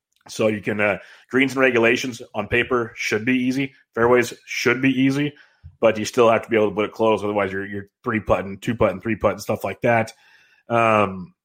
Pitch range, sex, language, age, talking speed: 105-125 Hz, male, English, 30-49, 220 wpm